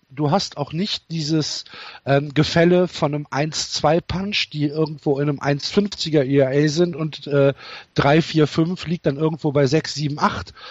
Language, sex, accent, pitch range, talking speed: German, male, German, 140-175 Hz, 165 wpm